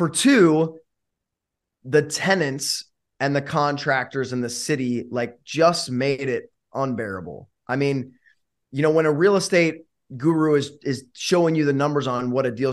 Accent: American